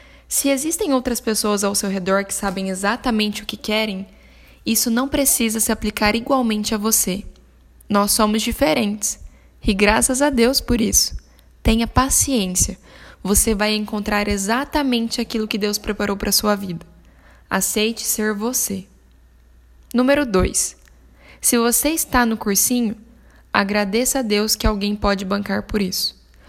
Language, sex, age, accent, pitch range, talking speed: Portuguese, female, 10-29, Brazilian, 200-240 Hz, 145 wpm